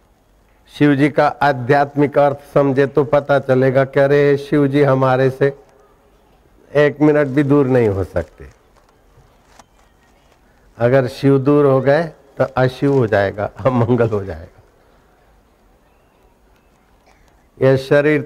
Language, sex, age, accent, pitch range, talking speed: Hindi, male, 60-79, native, 115-140 Hz, 110 wpm